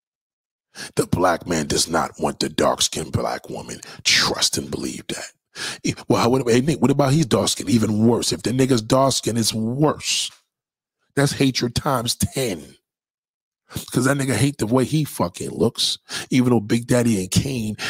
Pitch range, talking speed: 110-125 Hz, 175 wpm